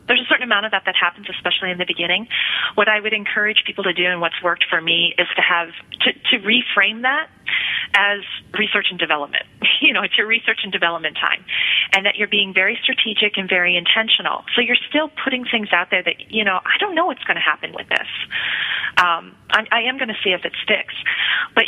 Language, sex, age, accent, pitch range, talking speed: English, female, 30-49, American, 170-210 Hz, 225 wpm